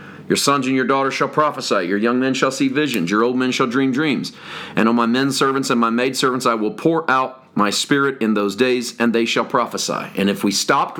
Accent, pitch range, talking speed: American, 115-165 Hz, 240 wpm